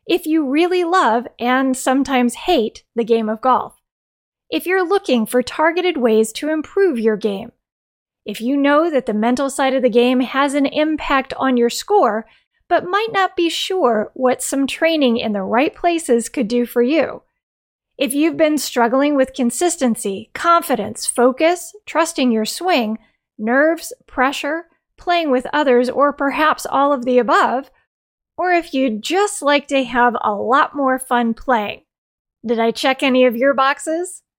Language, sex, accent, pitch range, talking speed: English, female, American, 240-325 Hz, 165 wpm